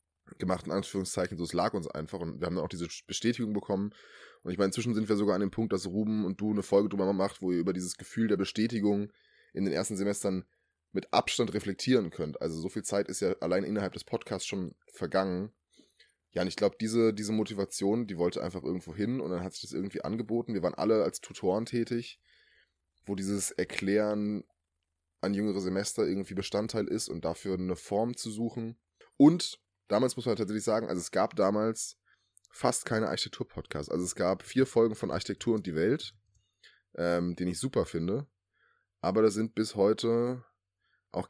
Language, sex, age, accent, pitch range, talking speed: German, male, 10-29, German, 90-110 Hz, 195 wpm